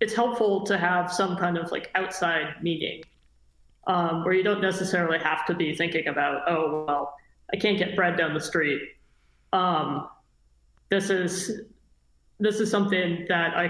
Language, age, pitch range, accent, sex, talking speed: English, 30-49, 165-195 Hz, American, male, 160 wpm